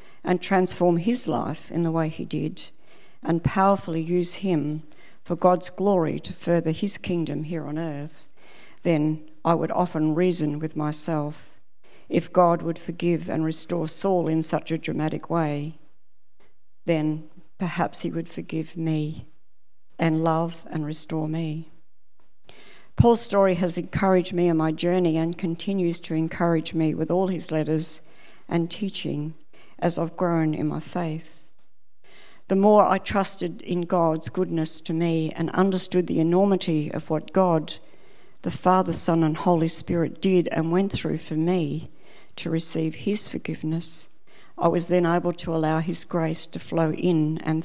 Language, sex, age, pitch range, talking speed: English, female, 60-79, 160-180 Hz, 155 wpm